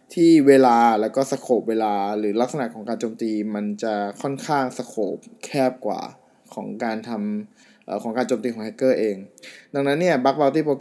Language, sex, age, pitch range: Thai, male, 20-39, 110-140 Hz